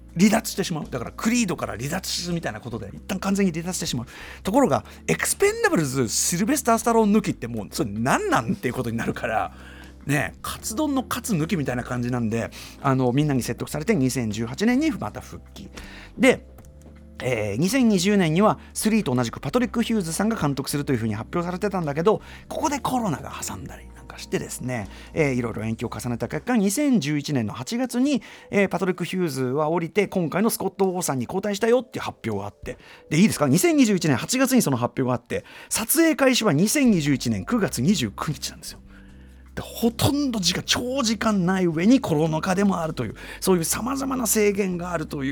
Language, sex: Japanese, male